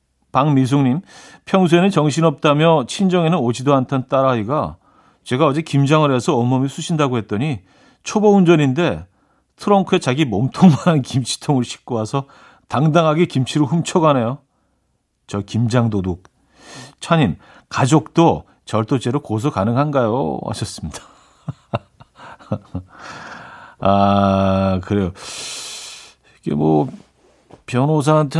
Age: 40-59